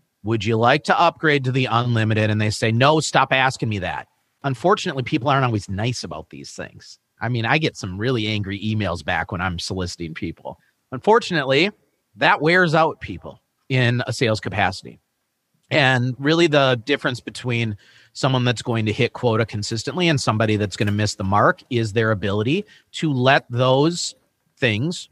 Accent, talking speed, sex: American, 170 wpm, male